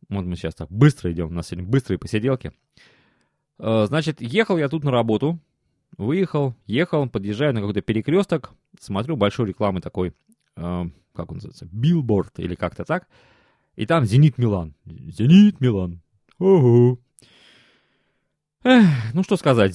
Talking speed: 130 wpm